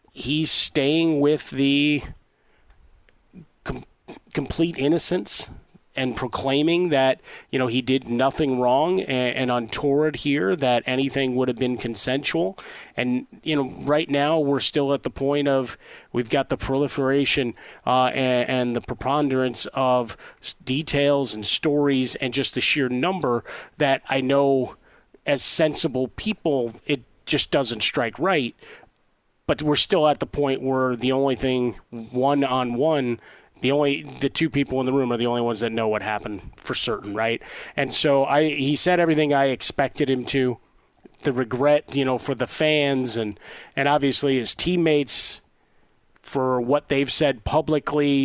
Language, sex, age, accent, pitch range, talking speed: English, male, 30-49, American, 125-145 Hz, 155 wpm